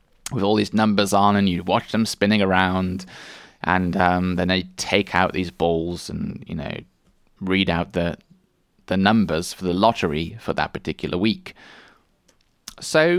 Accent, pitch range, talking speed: British, 85-110 Hz, 160 wpm